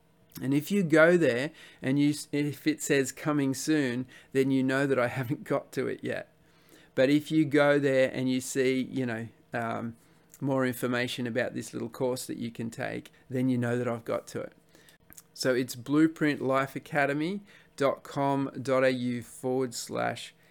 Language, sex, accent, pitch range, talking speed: English, male, Australian, 120-145 Hz, 165 wpm